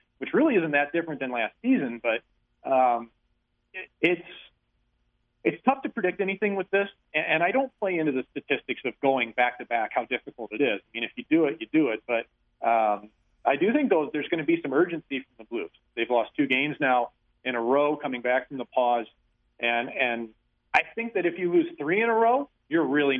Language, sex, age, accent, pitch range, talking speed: English, male, 40-59, American, 120-155 Hz, 220 wpm